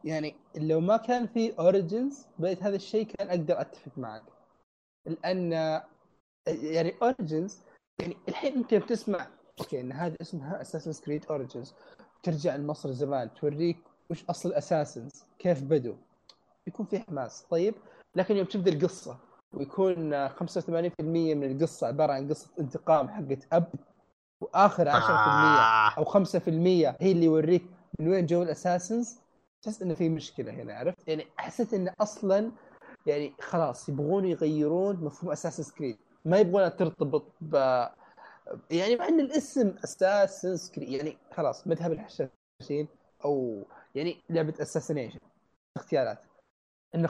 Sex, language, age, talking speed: male, Arabic, 20-39, 130 wpm